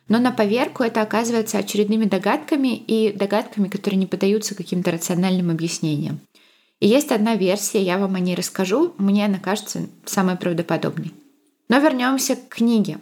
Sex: female